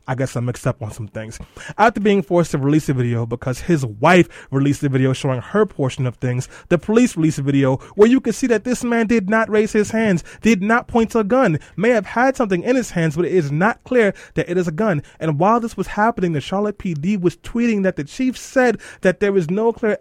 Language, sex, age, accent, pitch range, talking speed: English, male, 20-39, American, 145-200 Hz, 255 wpm